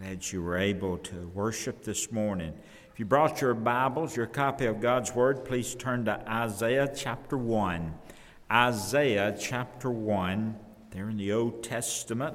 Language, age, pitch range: English, 60-79, 105-140 Hz